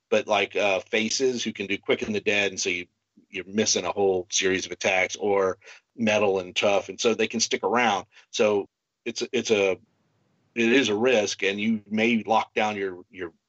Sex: male